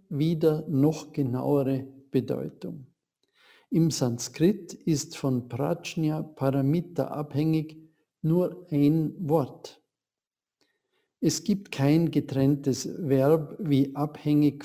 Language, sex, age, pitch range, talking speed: German, male, 50-69, 140-175 Hz, 85 wpm